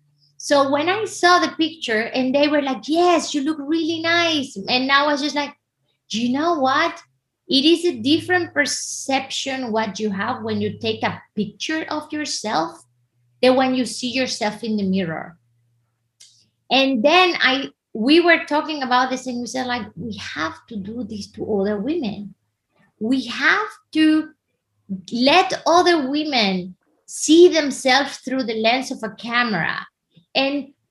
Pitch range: 220-290 Hz